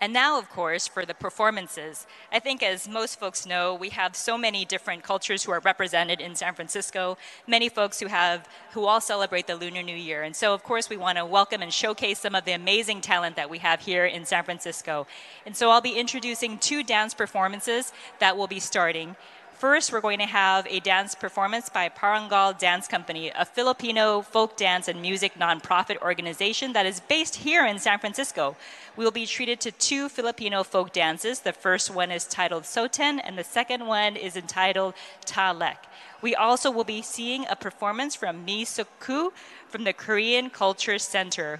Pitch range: 180-225 Hz